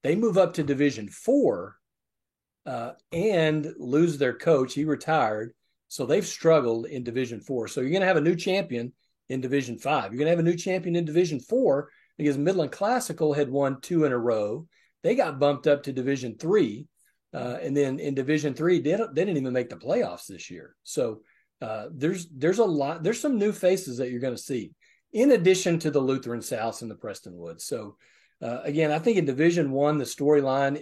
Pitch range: 120-155 Hz